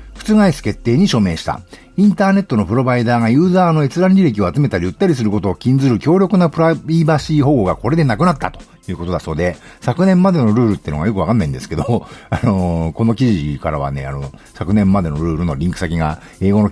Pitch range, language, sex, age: 100-165 Hz, Japanese, male, 50-69